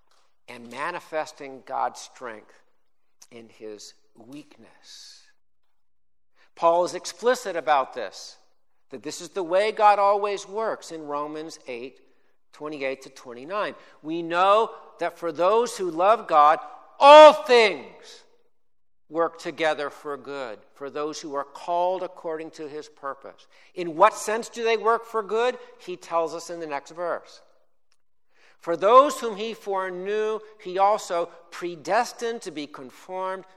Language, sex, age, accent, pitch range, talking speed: English, male, 60-79, American, 135-205 Hz, 135 wpm